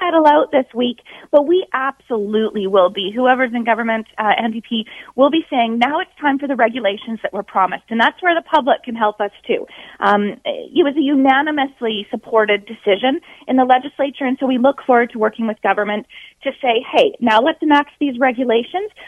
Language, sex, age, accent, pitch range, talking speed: English, female, 30-49, American, 235-310 Hz, 190 wpm